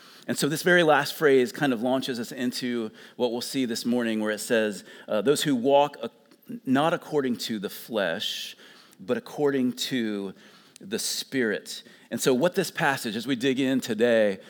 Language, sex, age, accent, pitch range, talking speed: English, male, 40-59, American, 120-145 Hz, 180 wpm